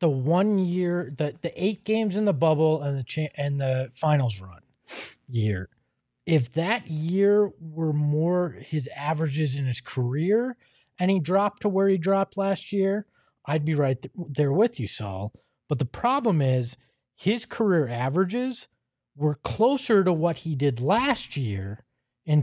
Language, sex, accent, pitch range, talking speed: English, male, American, 145-195 Hz, 165 wpm